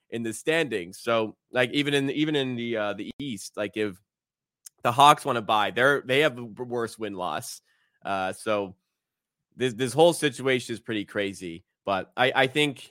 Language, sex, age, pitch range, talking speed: English, male, 20-39, 105-135 Hz, 190 wpm